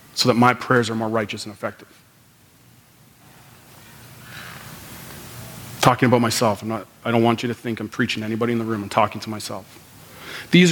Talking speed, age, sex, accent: 185 wpm, 40-59, male, American